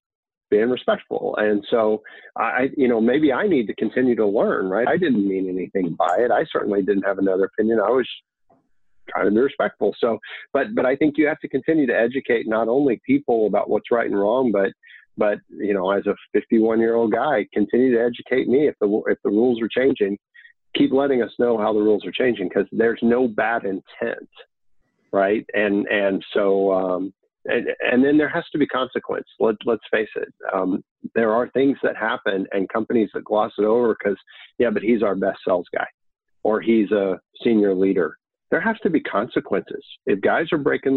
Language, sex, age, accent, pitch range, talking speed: English, male, 50-69, American, 105-135 Hz, 200 wpm